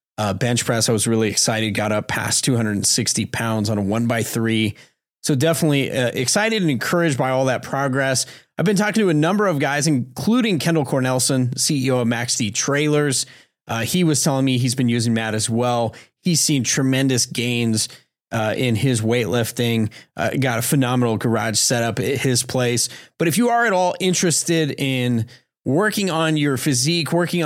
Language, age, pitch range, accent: English, 30-49, 120-150 Hz, American